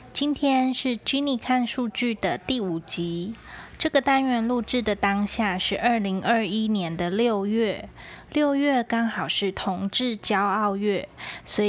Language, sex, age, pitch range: Chinese, female, 20-39, 190-235 Hz